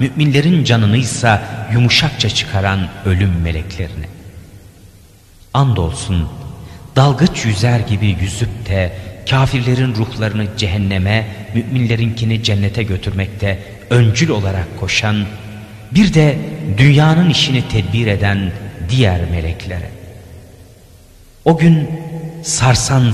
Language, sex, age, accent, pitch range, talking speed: Turkish, male, 40-59, native, 100-125 Hz, 85 wpm